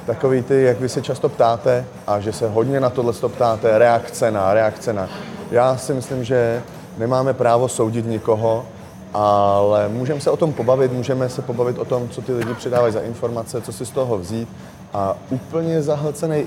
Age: 30-49